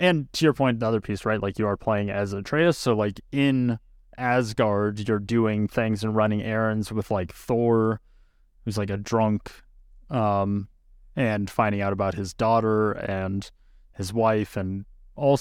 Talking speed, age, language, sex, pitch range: 165 wpm, 20-39, English, male, 100-125 Hz